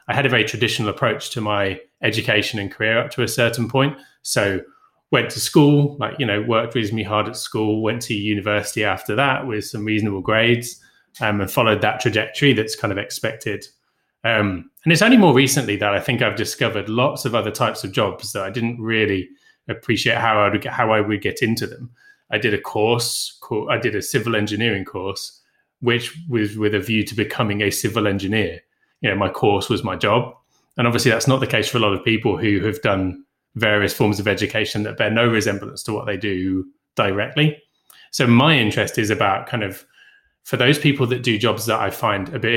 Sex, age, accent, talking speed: male, 20-39, British, 210 wpm